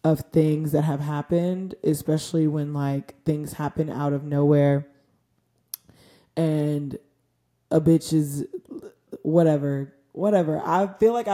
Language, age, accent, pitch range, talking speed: English, 20-39, American, 155-180 Hz, 115 wpm